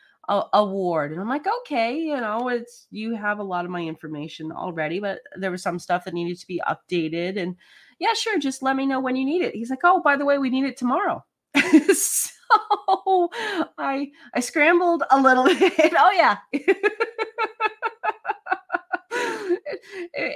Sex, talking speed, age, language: female, 170 wpm, 30-49, English